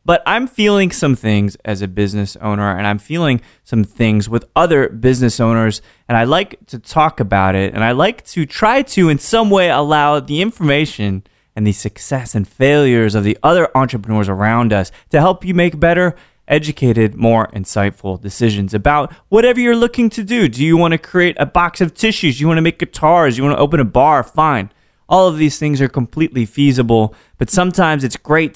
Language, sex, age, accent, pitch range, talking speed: English, male, 20-39, American, 105-165 Hz, 205 wpm